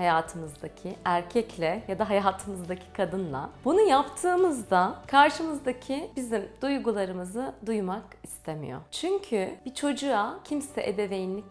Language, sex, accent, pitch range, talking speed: Turkish, female, native, 185-265 Hz, 95 wpm